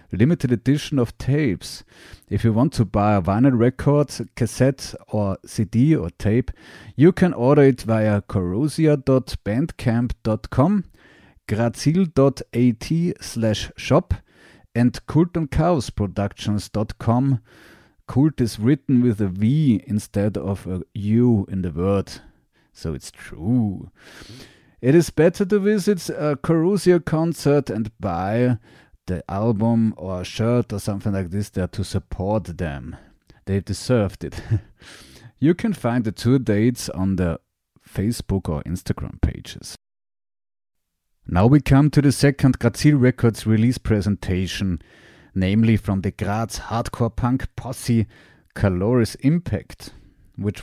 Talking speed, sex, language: 120 wpm, male, French